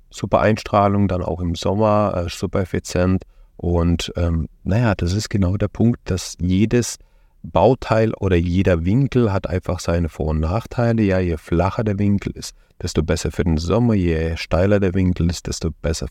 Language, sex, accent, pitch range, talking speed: German, male, German, 85-105 Hz, 175 wpm